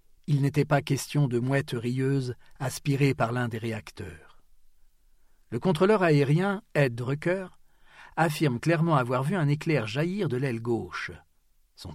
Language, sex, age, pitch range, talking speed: French, male, 40-59, 115-155 Hz, 140 wpm